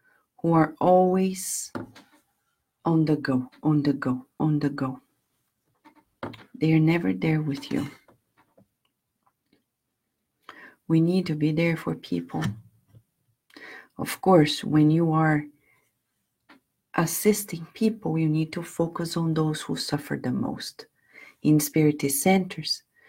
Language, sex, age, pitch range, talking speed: English, female, 40-59, 145-185 Hz, 115 wpm